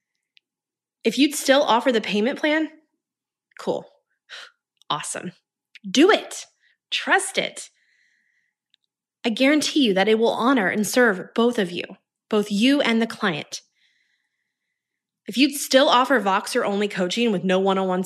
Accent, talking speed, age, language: American, 130 wpm, 20-39, English